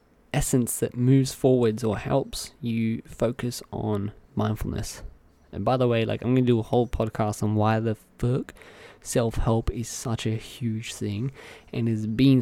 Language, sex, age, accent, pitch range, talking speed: English, male, 20-39, Australian, 105-130 Hz, 165 wpm